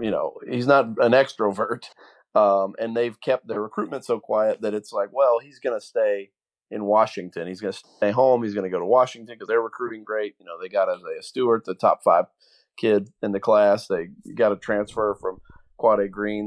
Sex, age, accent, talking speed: male, 30-49, American, 220 wpm